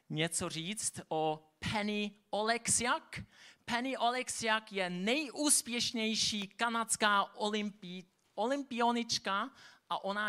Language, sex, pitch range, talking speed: Czech, male, 165-210 Hz, 80 wpm